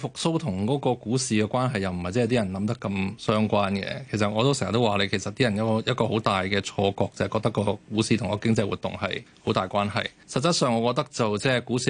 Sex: male